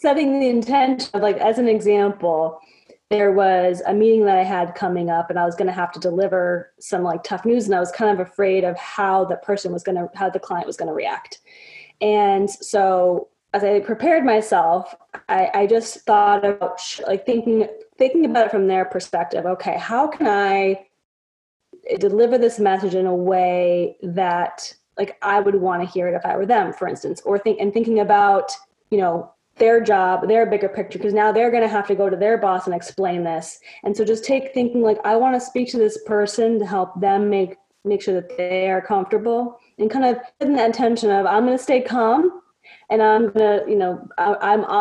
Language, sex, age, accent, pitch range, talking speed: English, female, 20-39, American, 185-235 Hz, 215 wpm